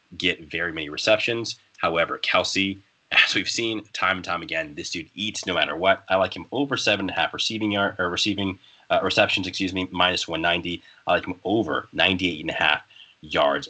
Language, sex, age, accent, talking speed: English, male, 30-49, American, 200 wpm